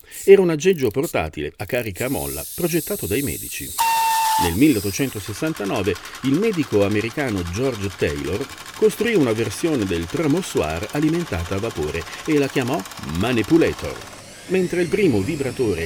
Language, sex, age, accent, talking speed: Italian, male, 50-69, native, 130 wpm